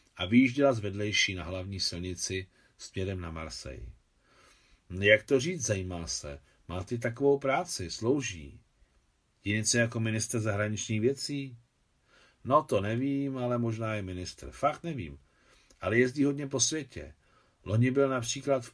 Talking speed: 135 wpm